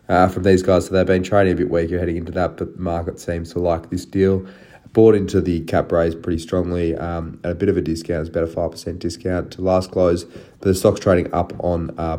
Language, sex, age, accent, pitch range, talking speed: English, male, 20-39, Australian, 85-100 Hz, 240 wpm